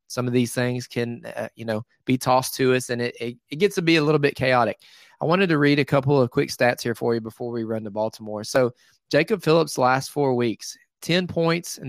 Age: 20-39